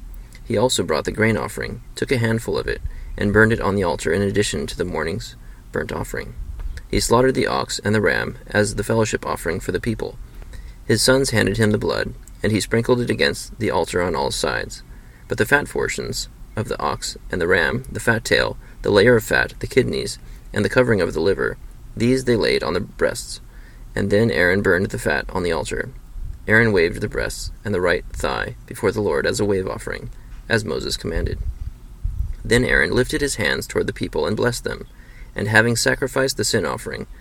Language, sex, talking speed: English, male, 210 wpm